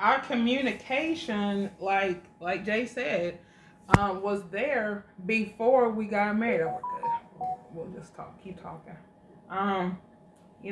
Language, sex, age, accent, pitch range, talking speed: English, female, 20-39, American, 190-230 Hz, 130 wpm